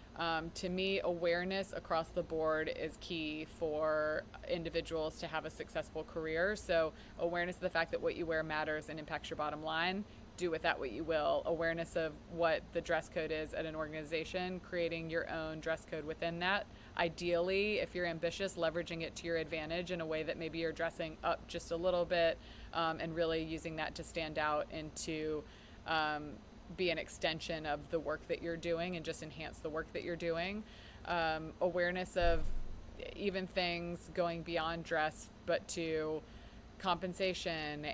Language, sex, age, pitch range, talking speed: English, female, 20-39, 155-175 Hz, 180 wpm